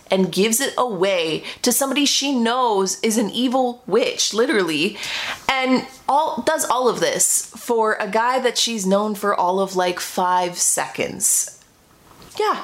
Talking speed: 150 wpm